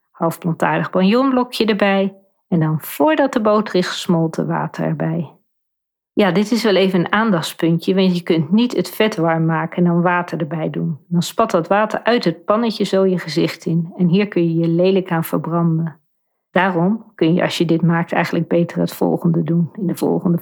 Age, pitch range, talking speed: 40-59, 165-205 Hz, 195 wpm